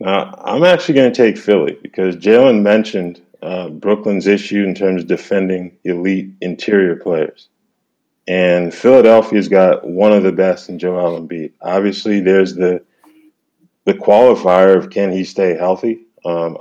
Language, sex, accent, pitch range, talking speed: English, male, American, 90-105 Hz, 150 wpm